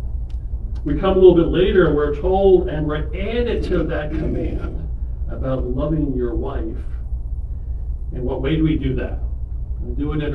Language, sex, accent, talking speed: English, male, American, 175 wpm